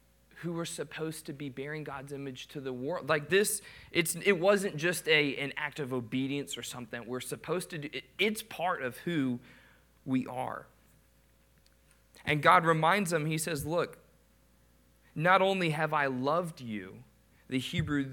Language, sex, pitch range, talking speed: English, male, 125-160 Hz, 165 wpm